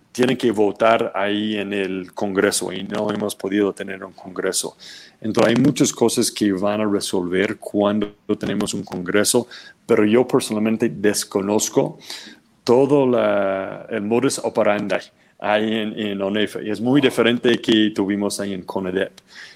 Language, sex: Spanish, male